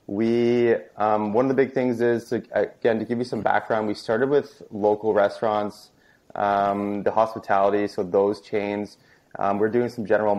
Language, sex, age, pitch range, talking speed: English, male, 20-39, 100-115 Hz, 180 wpm